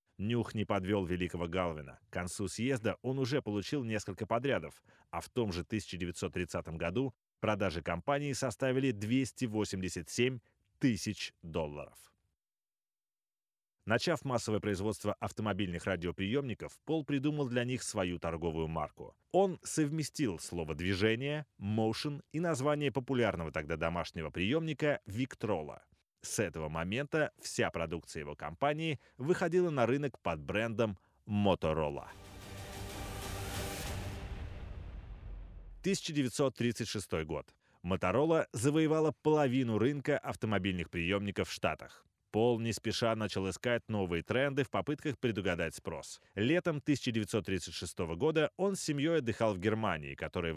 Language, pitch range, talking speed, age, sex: Russian, 90-135 Hz, 110 wpm, 30-49, male